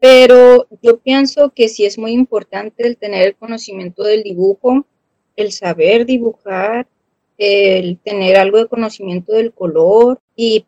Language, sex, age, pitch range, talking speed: Spanish, female, 30-49, 200-235 Hz, 140 wpm